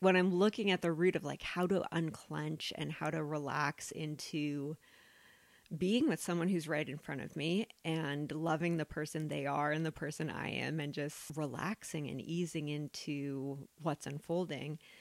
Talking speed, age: 175 wpm, 30-49